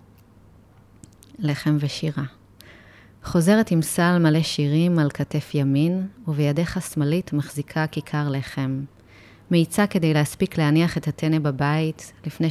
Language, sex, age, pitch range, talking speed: Hebrew, female, 30-49, 115-155 Hz, 110 wpm